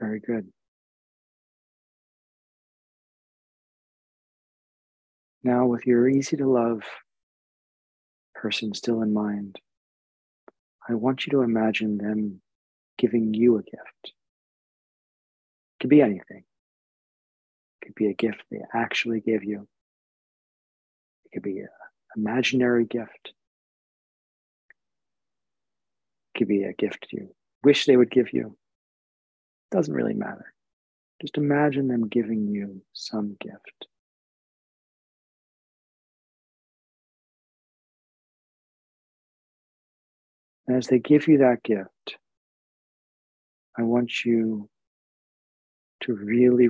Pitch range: 105-125 Hz